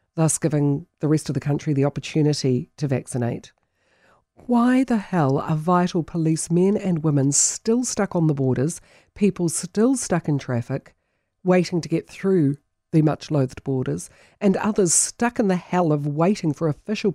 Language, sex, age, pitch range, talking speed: English, female, 50-69, 145-205 Hz, 165 wpm